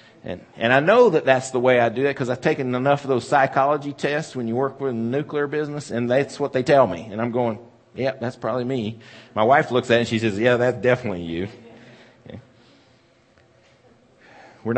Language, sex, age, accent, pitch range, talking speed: English, male, 50-69, American, 95-125 Hz, 210 wpm